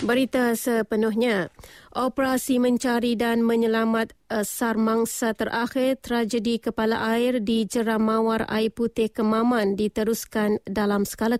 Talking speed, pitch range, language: 105 wpm, 220-240 Hz, English